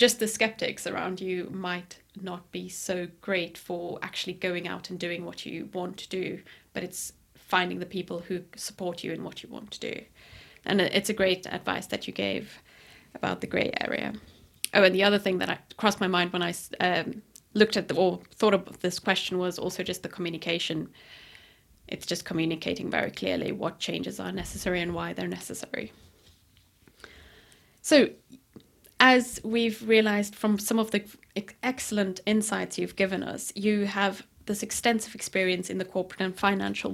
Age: 20-39